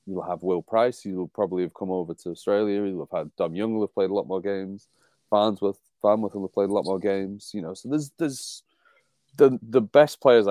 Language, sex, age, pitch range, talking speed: English, male, 30-49, 85-105 Hz, 230 wpm